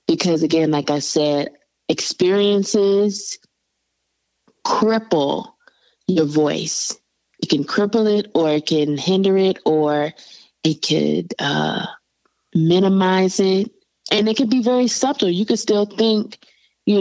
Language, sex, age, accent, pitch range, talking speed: English, female, 20-39, American, 155-205 Hz, 125 wpm